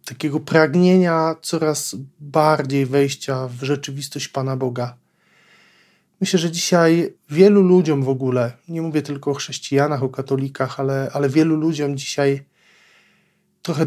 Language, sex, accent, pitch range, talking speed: Polish, male, native, 135-160 Hz, 125 wpm